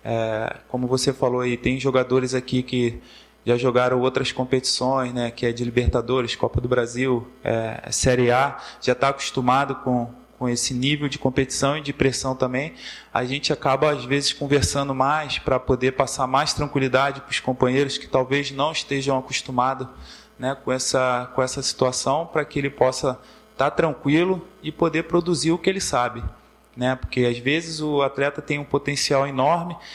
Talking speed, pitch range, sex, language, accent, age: 165 wpm, 130-160 Hz, male, Portuguese, Brazilian, 20-39